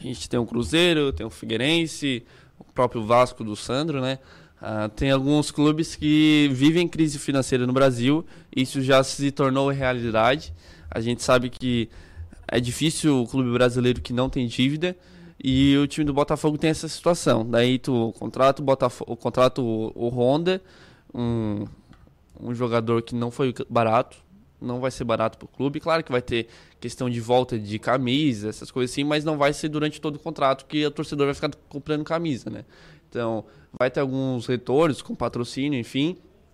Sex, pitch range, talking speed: male, 120-145 Hz, 175 wpm